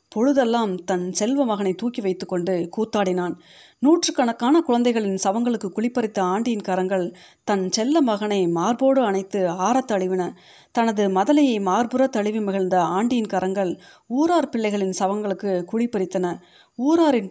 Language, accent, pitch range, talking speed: Tamil, native, 190-245 Hz, 105 wpm